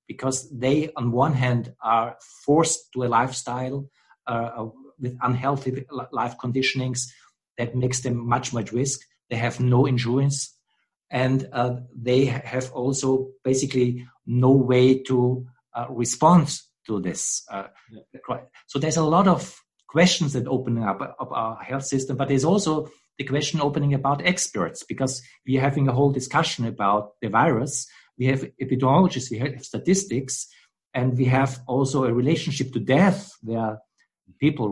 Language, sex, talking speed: English, male, 145 wpm